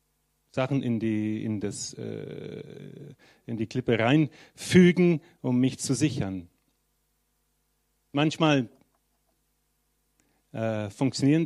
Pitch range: 100-140 Hz